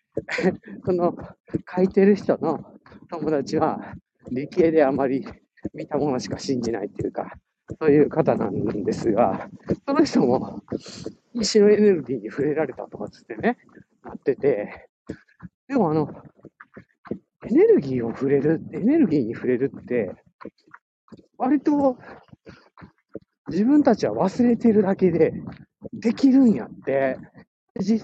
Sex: male